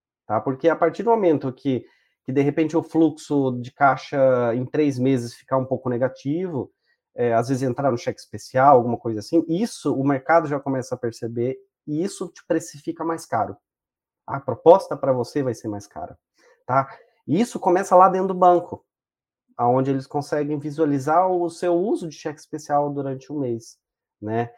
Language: Portuguese